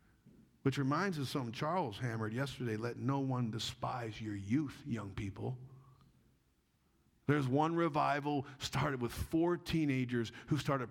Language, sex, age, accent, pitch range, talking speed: English, male, 50-69, American, 125-195 Hz, 140 wpm